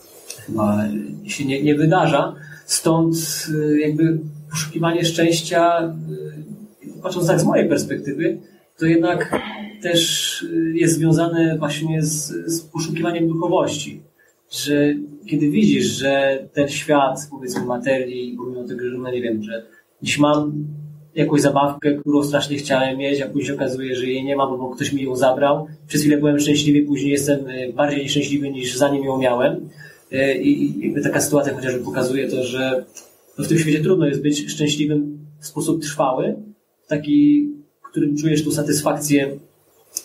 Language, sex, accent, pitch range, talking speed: Polish, male, native, 135-165 Hz, 140 wpm